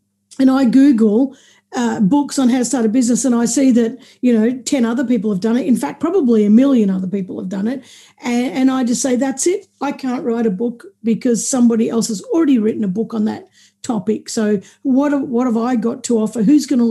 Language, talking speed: English, 240 wpm